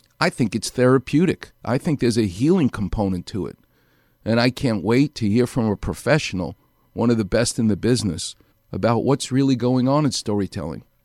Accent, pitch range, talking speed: American, 105-135 Hz, 190 wpm